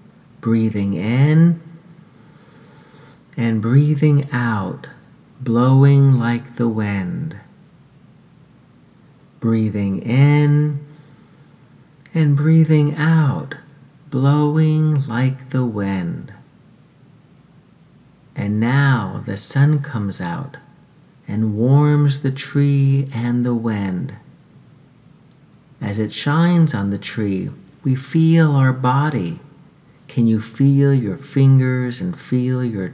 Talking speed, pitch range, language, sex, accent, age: 90 wpm, 115-145 Hz, English, male, American, 40-59